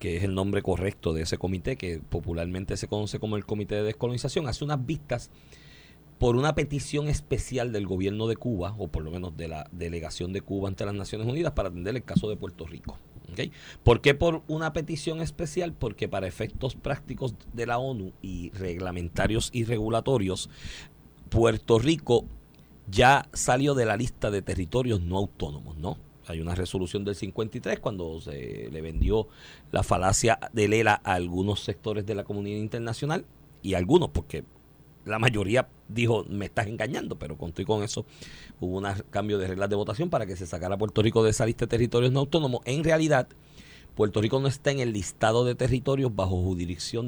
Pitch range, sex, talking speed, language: 95-125 Hz, male, 180 wpm, Spanish